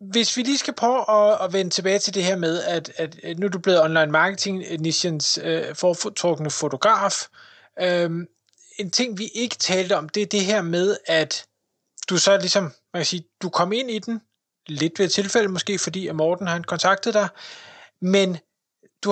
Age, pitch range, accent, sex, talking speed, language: 20-39, 165-205 Hz, native, male, 175 wpm, Danish